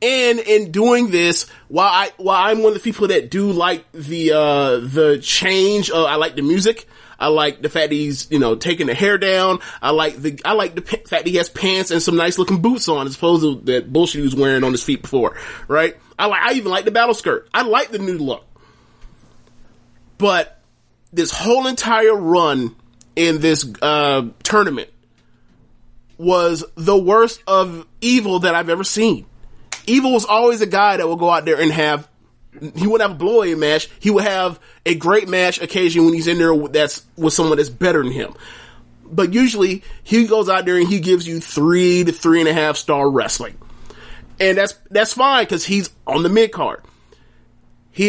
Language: English